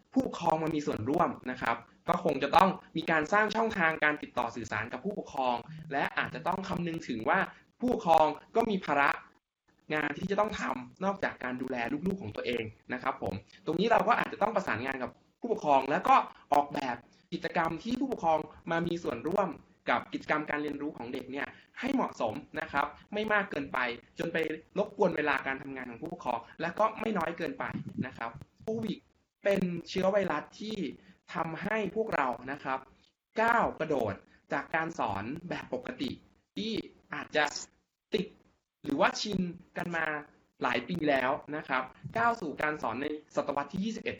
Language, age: Thai, 20-39